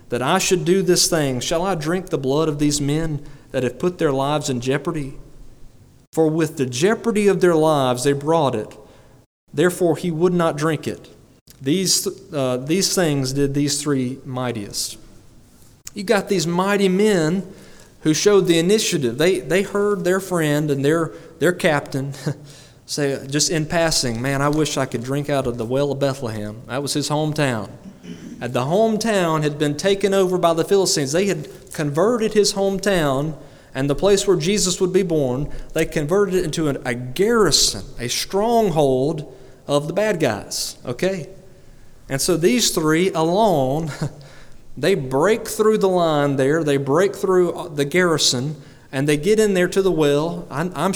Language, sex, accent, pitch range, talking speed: English, male, American, 135-180 Hz, 170 wpm